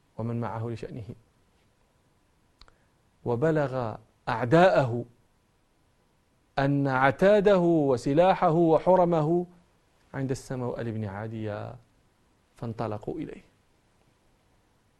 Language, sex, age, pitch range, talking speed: Arabic, male, 40-59, 110-150 Hz, 60 wpm